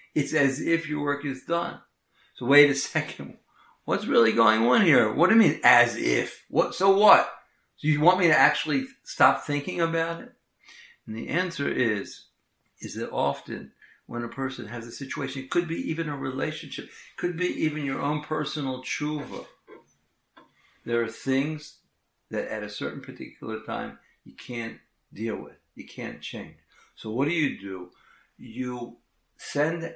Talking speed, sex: 170 wpm, male